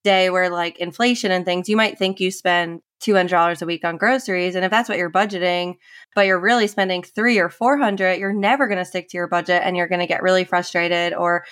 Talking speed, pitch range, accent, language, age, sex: 235 wpm, 180-200 Hz, American, English, 20-39, female